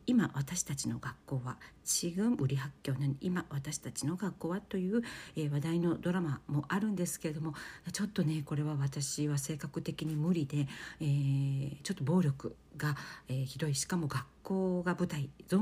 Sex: female